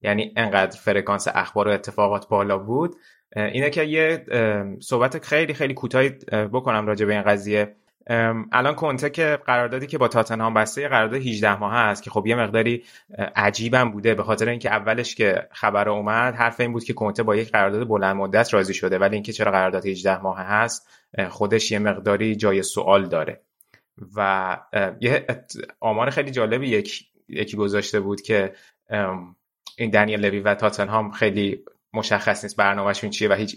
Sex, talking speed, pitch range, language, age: male, 175 wpm, 105-120 Hz, Persian, 20-39